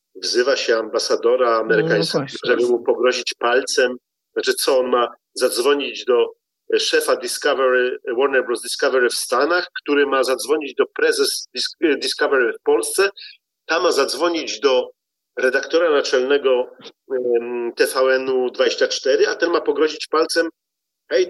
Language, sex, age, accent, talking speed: Polish, male, 40-59, native, 120 wpm